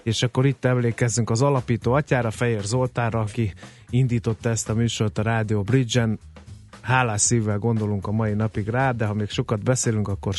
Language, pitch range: Hungarian, 110-135 Hz